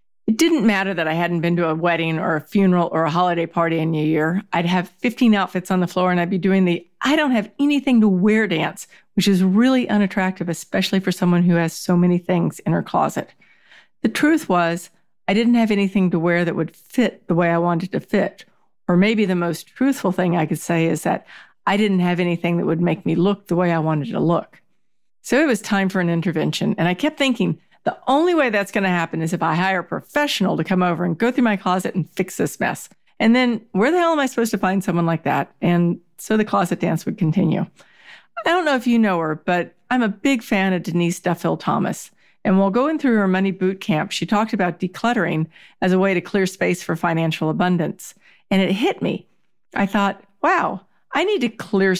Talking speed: 235 wpm